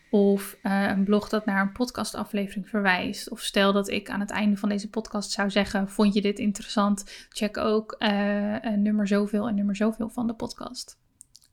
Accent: Dutch